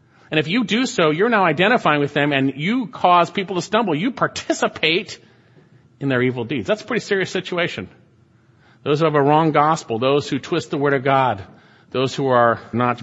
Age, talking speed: 40-59, 205 wpm